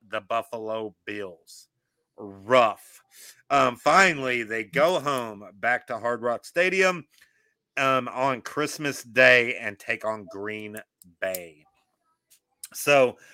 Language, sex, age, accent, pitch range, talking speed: English, male, 40-59, American, 105-135 Hz, 110 wpm